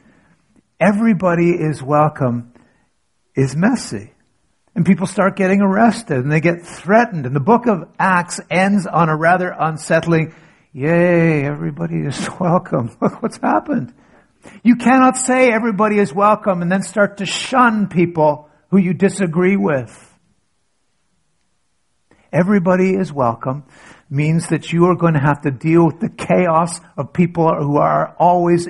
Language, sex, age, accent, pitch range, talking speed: English, male, 50-69, American, 150-195 Hz, 140 wpm